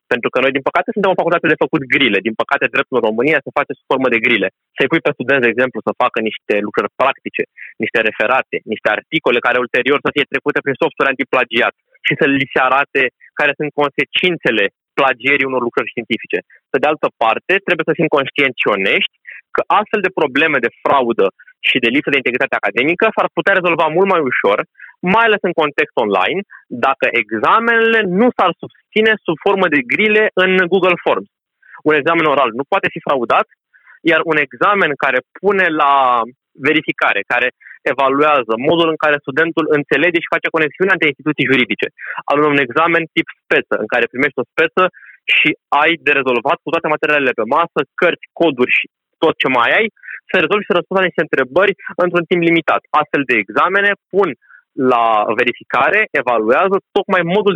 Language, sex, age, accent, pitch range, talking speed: Romanian, male, 20-39, native, 145-190 Hz, 180 wpm